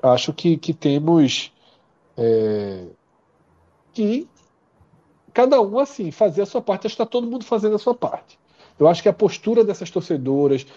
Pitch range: 135-200 Hz